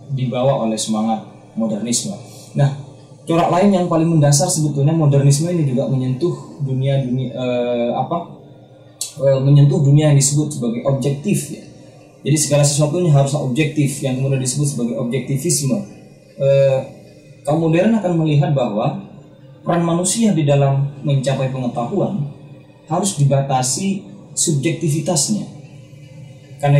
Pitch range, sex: 135-155 Hz, male